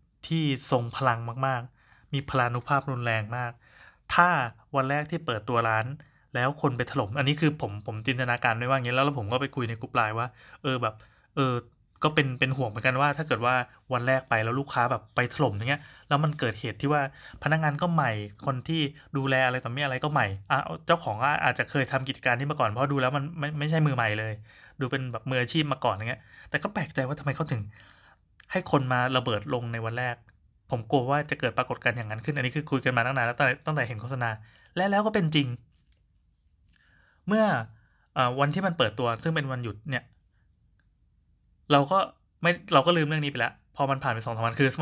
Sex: male